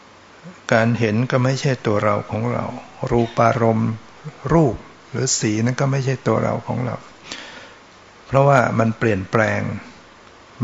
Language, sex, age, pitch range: Thai, male, 60-79, 110-125 Hz